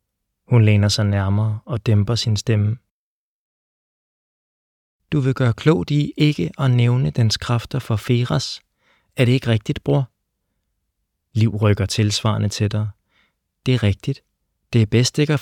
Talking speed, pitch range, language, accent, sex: 150 wpm, 105-135 Hz, Danish, native, male